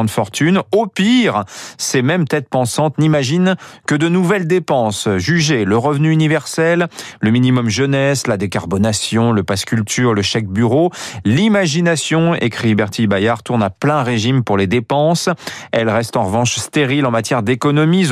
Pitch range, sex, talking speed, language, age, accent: 110-165 Hz, male, 155 wpm, French, 40-59, French